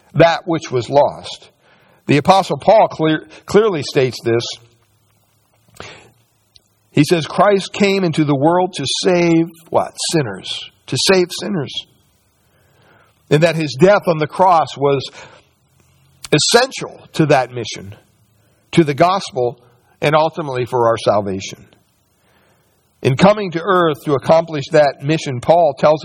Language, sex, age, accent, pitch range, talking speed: English, male, 60-79, American, 125-175 Hz, 125 wpm